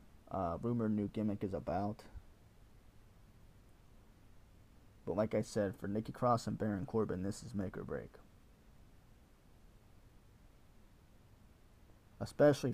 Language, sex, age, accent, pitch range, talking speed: English, male, 20-39, American, 100-115 Hz, 105 wpm